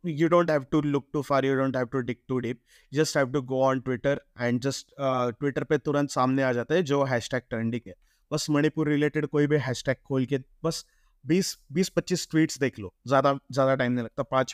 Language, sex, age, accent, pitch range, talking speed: Hindi, male, 30-49, native, 135-170 Hz, 215 wpm